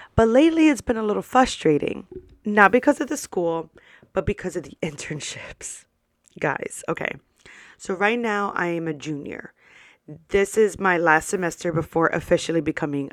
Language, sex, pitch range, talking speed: English, female, 165-210 Hz, 155 wpm